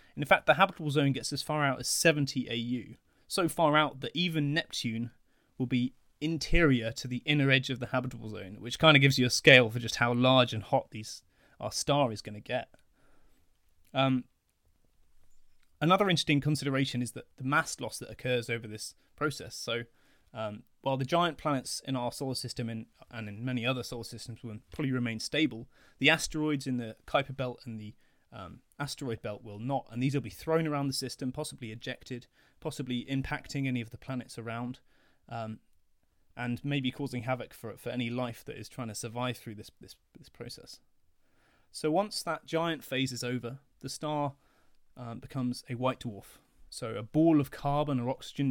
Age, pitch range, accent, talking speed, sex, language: 20-39, 115-140 Hz, British, 190 wpm, male, English